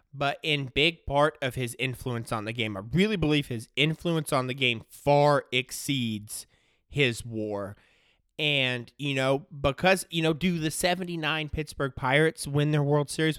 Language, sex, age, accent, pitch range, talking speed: English, male, 20-39, American, 125-165 Hz, 165 wpm